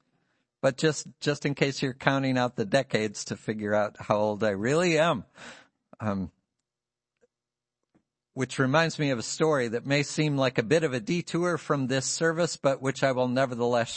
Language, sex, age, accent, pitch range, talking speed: English, male, 50-69, American, 120-150 Hz, 180 wpm